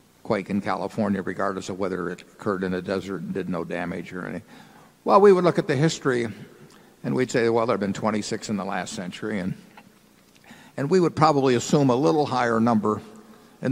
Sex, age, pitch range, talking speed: male, 60-79, 105-140 Hz, 205 wpm